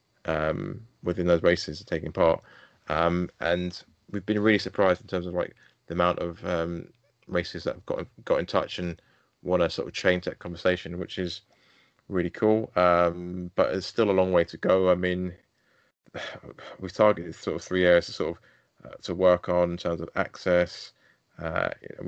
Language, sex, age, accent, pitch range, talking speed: English, male, 20-39, British, 90-95 Hz, 190 wpm